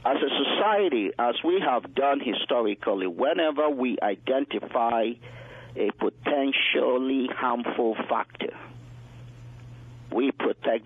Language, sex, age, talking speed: English, male, 50-69, 95 wpm